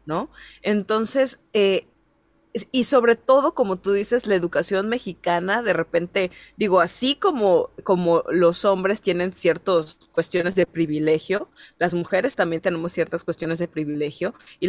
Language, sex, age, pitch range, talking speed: Spanish, female, 20-39, 175-235 Hz, 140 wpm